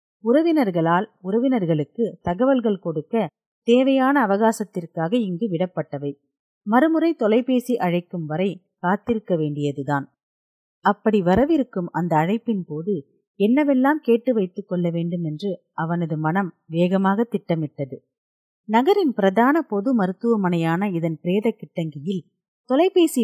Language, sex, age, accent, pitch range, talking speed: Tamil, female, 30-49, native, 170-230 Hz, 95 wpm